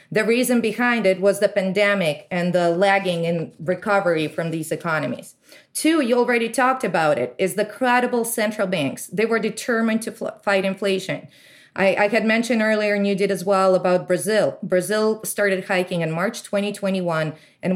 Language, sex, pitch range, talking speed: English, female, 170-210 Hz, 170 wpm